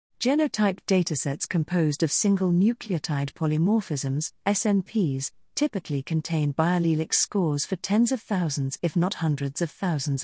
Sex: female